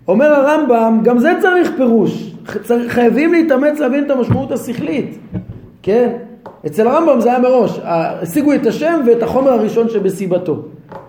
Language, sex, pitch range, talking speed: Hebrew, male, 180-245 Hz, 135 wpm